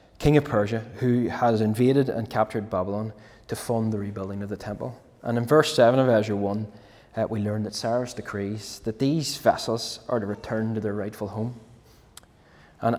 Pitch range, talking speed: 110-125 Hz, 185 wpm